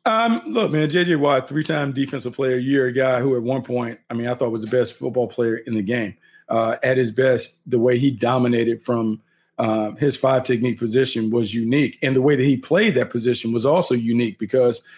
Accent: American